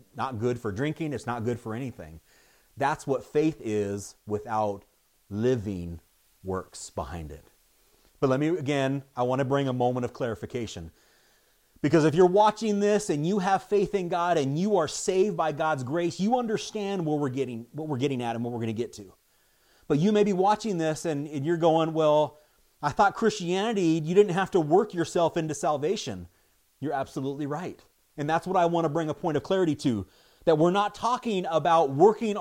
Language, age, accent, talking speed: English, 30-49, American, 200 wpm